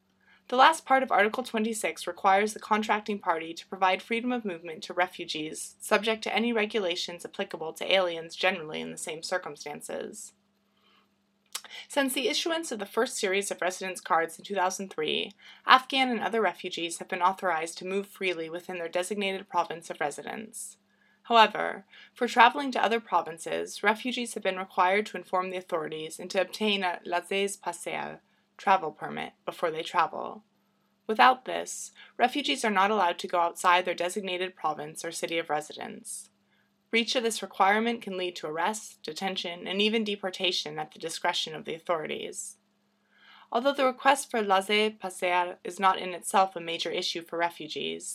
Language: English